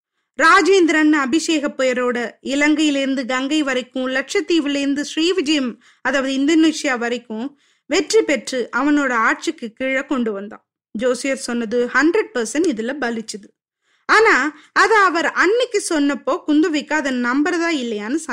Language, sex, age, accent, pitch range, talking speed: Tamil, female, 20-39, native, 250-345 Hz, 110 wpm